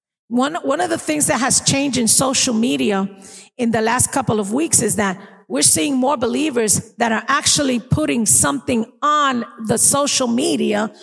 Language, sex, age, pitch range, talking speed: English, female, 50-69, 200-310 Hz, 175 wpm